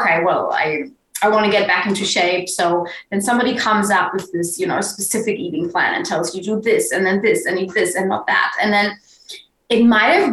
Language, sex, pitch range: English, female, 185-245 Hz